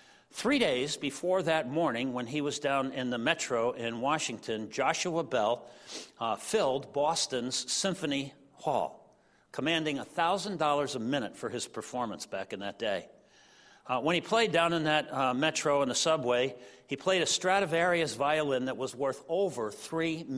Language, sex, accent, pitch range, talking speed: English, male, American, 130-190 Hz, 160 wpm